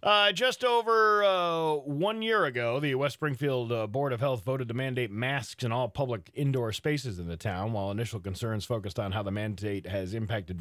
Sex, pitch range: male, 100-140 Hz